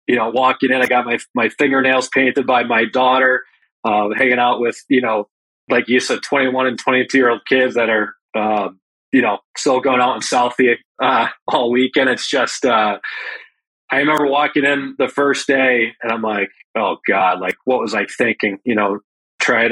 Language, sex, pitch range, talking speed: English, male, 115-135 Hz, 195 wpm